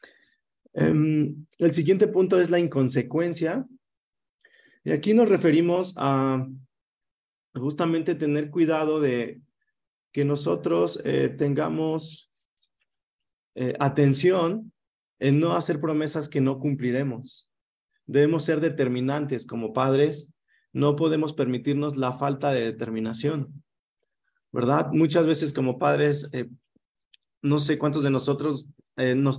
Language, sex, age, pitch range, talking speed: Spanish, male, 30-49, 135-165 Hz, 110 wpm